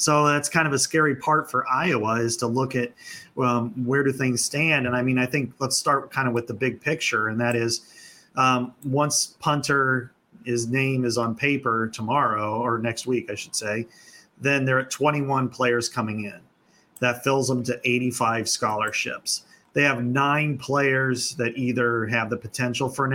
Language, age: English, 30-49